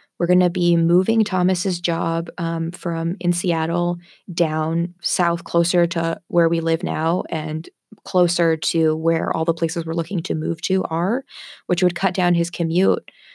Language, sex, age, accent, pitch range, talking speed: English, female, 20-39, American, 170-185 Hz, 170 wpm